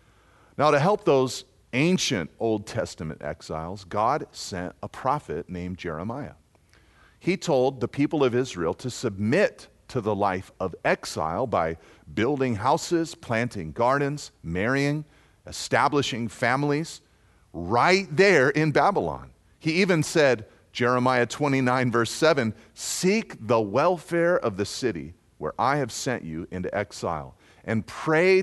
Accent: American